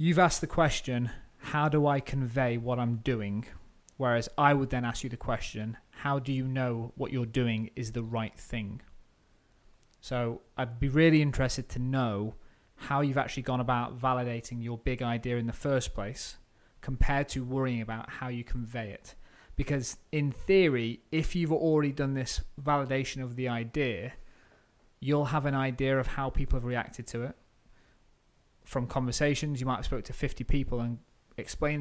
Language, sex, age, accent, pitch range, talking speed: English, male, 30-49, British, 120-140 Hz, 175 wpm